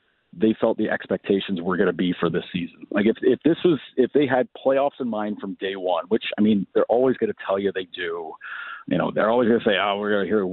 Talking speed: 280 wpm